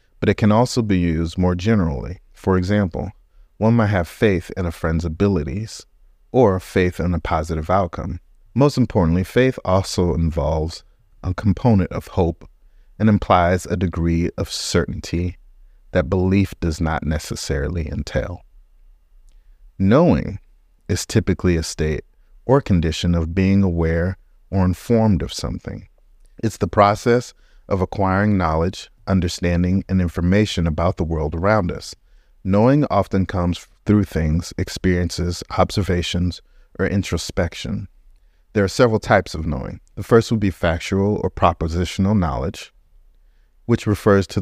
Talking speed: 135 wpm